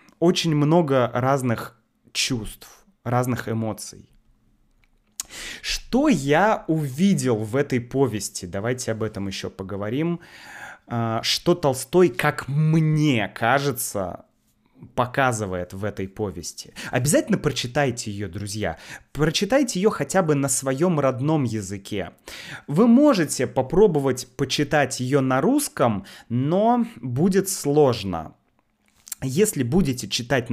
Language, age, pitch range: Russian, 20-39, 115-165 Hz